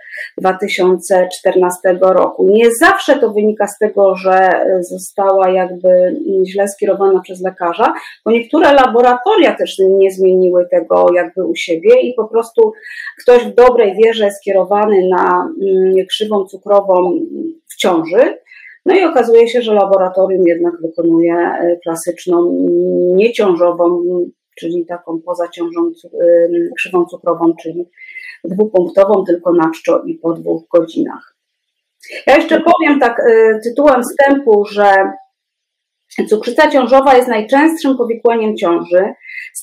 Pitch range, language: 180-235 Hz, Polish